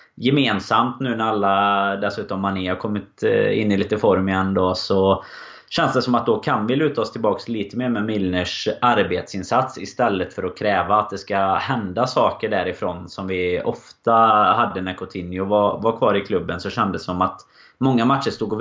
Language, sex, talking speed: Swedish, male, 195 wpm